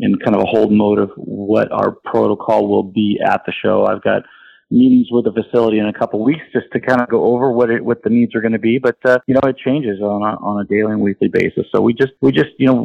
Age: 40-59